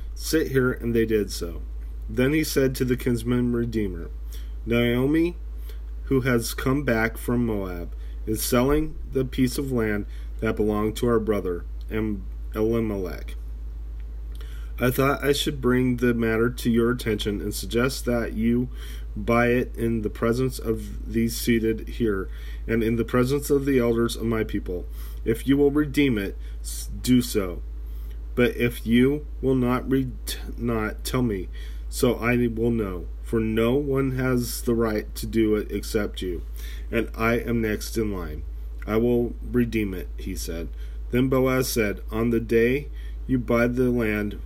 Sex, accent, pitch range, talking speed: male, American, 75-120 Hz, 155 wpm